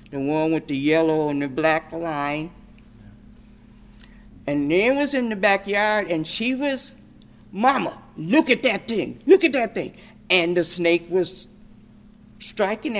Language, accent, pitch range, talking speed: English, American, 170-230 Hz, 150 wpm